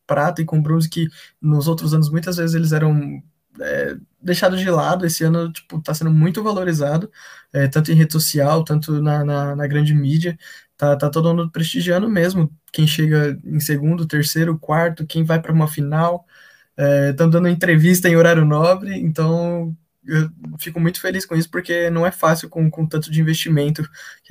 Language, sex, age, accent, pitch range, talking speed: Portuguese, male, 20-39, Brazilian, 150-170 Hz, 185 wpm